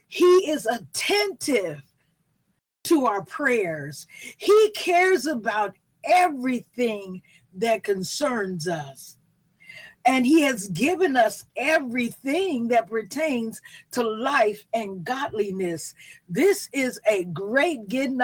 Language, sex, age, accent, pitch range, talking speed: English, female, 50-69, American, 215-320 Hz, 100 wpm